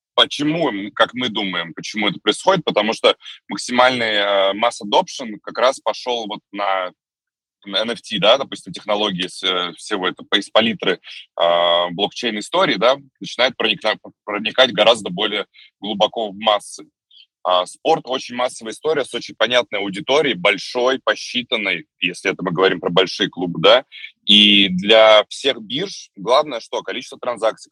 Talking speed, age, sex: 145 wpm, 20-39, male